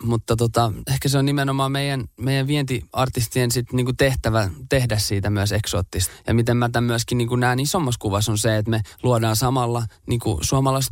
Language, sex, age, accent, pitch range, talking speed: Finnish, male, 20-39, native, 105-130 Hz, 180 wpm